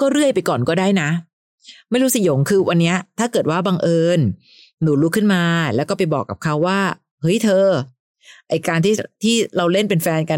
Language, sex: Thai, female